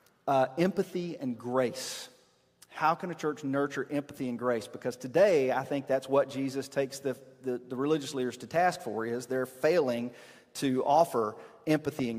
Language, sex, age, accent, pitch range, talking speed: English, male, 40-59, American, 125-160 Hz, 170 wpm